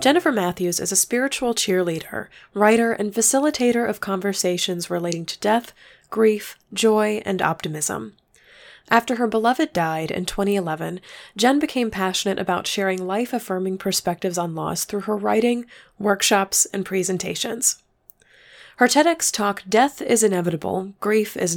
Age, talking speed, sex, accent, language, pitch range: 20-39, 130 wpm, female, American, English, 185-230 Hz